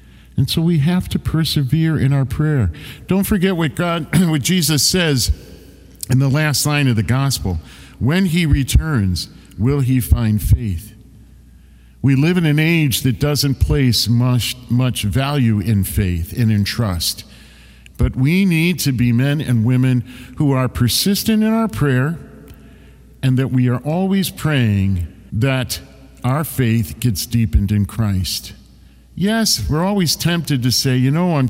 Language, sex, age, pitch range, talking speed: English, male, 50-69, 95-140 Hz, 155 wpm